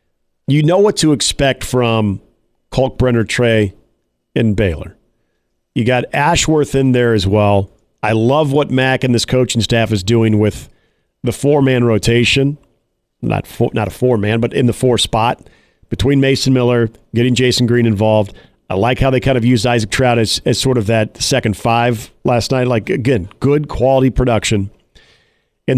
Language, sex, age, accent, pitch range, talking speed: English, male, 40-59, American, 110-135 Hz, 170 wpm